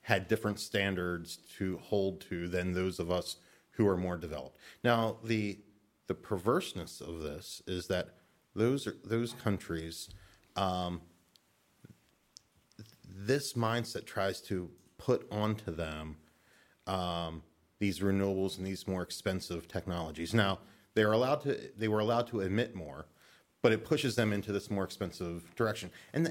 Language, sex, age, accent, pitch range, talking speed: English, male, 30-49, American, 95-120 Hz, 145 wpm